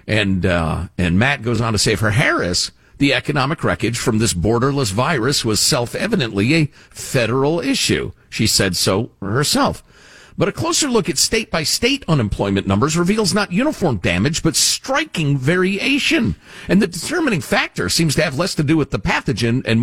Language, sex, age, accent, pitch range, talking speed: English, male, 50-69, American, 105-165 Hz, 165 wpm